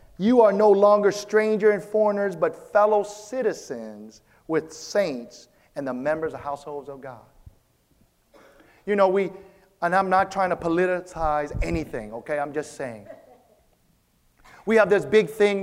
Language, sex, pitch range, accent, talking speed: English, male, 185-235 Hz, American, 145 wpm